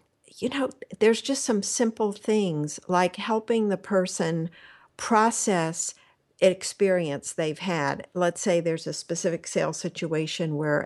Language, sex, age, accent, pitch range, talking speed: English, female, 60-79, American, 165-215 Hz, 125 wpm